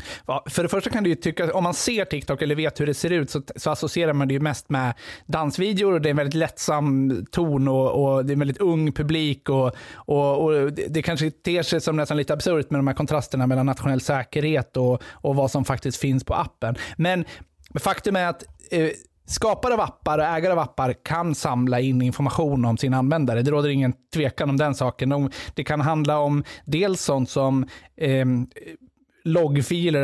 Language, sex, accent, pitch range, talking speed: Swedish, male, native, 130-155 Hz, 205 wpm